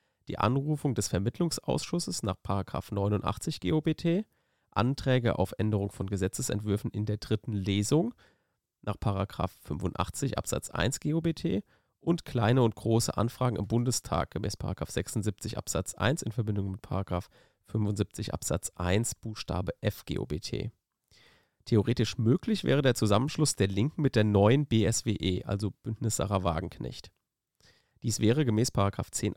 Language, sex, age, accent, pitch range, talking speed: German, male, 30-49, German, 100-125 Hz, 125 wpm